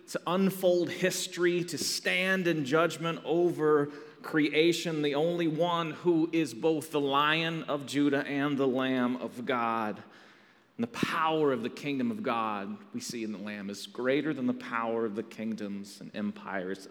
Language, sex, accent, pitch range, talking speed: English, male, American, 120-170 Hz, 165 wpm